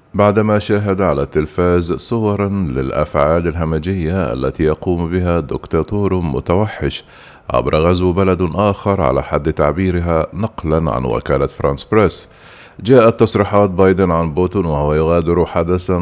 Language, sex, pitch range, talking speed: Arabic, male, 80-95 Hz, 120 wpm